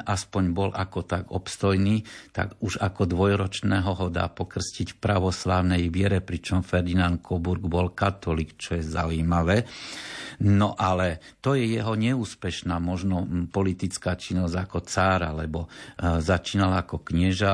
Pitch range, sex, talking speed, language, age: 85-100 Hz, male, 130 wpm, Slovak, 50-69